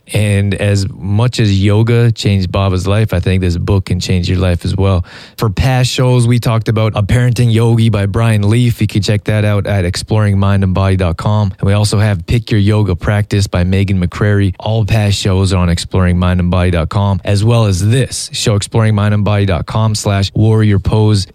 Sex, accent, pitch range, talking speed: male, American, 95-110 Hz, 175 wpm